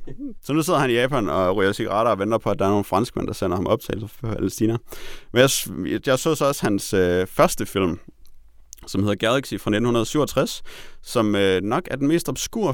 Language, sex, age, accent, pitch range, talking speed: Danish, male, 30-49, native, 100-135 Hz, 205 wpm